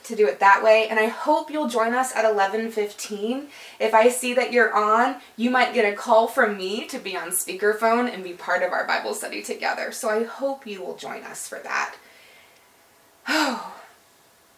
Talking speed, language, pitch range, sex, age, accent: 200 wpm, English, 195-240 Hz, female, 20-39, American